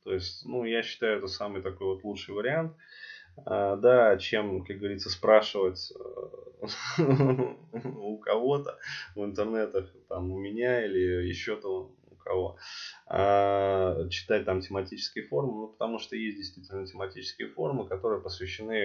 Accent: native